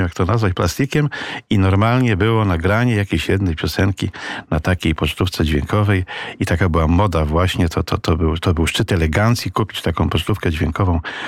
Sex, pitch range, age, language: male, 100-140 Hz, 50-69, Polish